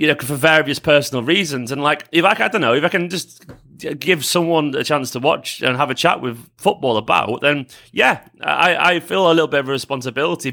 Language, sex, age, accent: English, male, 30-49, British